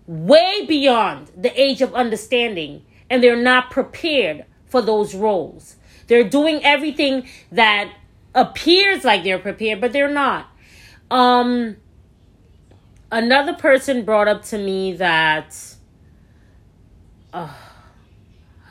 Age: 30-49